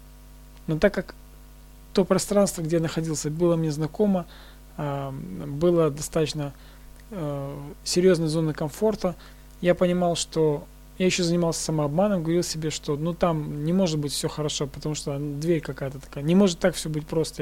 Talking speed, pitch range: 150 wpm, 145-180 Hz